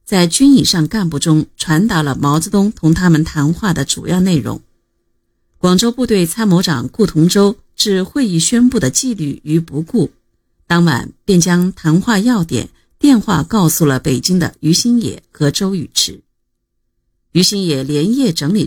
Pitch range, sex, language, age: 145-190 Hz, female, Chinese, 50-69